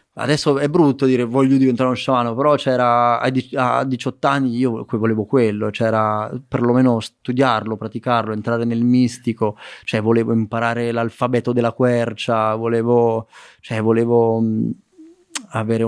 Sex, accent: male, native